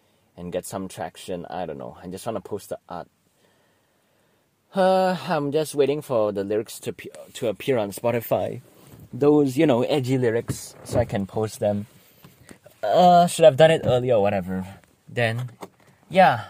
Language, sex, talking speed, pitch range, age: English, male, 175 wpm, 100-145 Hz, 20-39